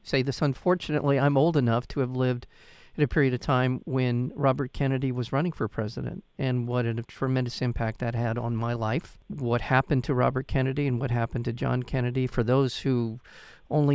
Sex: male